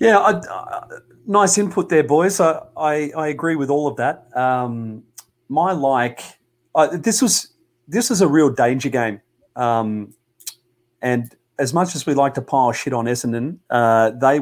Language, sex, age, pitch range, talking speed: English, male, 30-49, 120-150 Hz, 170 wpm